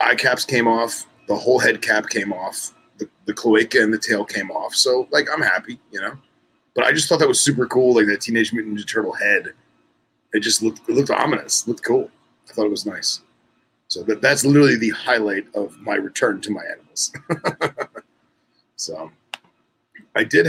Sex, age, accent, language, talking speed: male, 30-49, American, English, 195 wpm